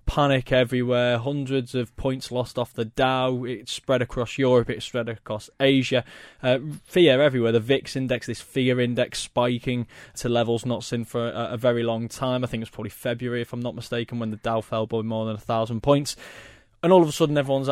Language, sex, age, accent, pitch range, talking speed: English, male, 20-39, British, 120-135 Hz, 215 wpm